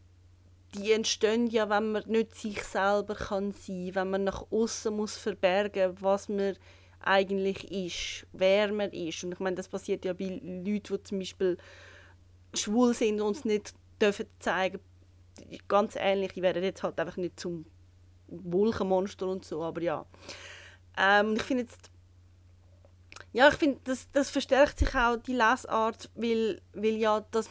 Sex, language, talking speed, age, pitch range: female, German, 155 wpm, 30-49, 160-215 Hz